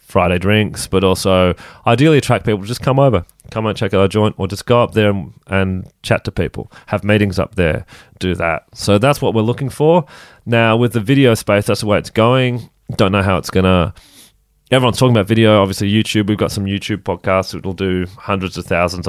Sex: male